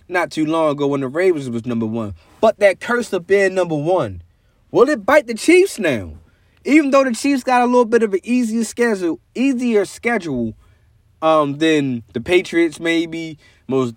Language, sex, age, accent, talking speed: English, male, 20-39, American, 185 wpm